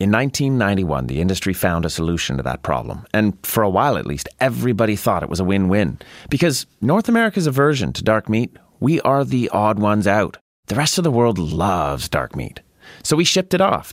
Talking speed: 205 wpm